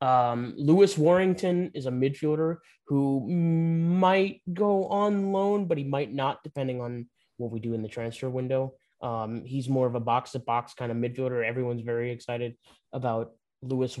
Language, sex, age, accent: English, male, 20-39, American